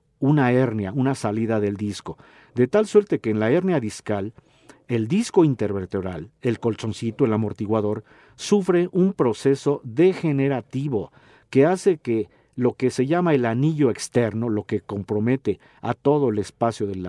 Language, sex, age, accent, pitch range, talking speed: Spanish, male, 50-69, Mexican, 110-145 Hz, 150 wpm